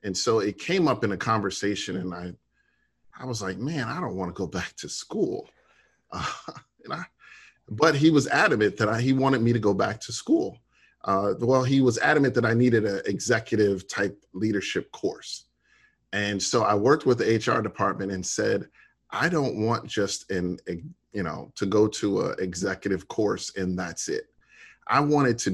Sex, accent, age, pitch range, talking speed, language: male, American, 40-59, 95-120 Hz, 190 wpm, English